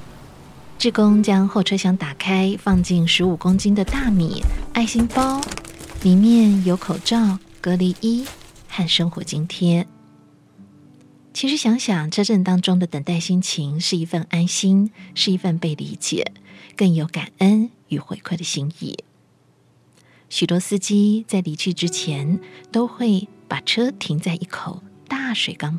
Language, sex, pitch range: Chinese, female, 170-210 Hz